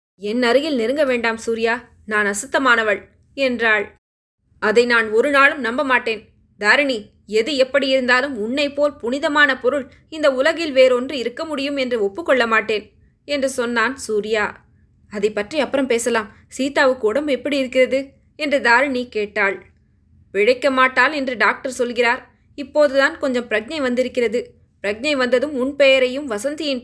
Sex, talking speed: female, 125 wpm